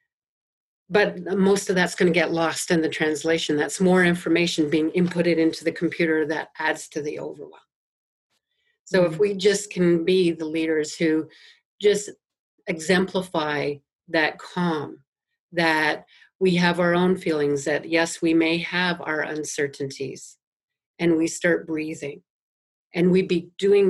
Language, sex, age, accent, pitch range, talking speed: English, female, 50-69, American, 155-185 Hz, 145 wpm